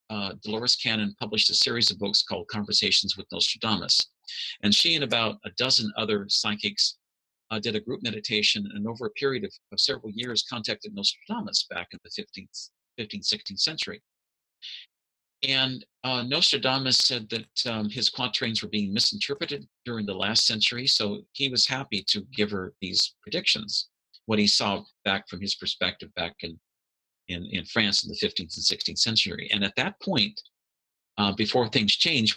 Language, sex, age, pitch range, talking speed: English, male, 50-69, 105-130 Hz, 170 wpm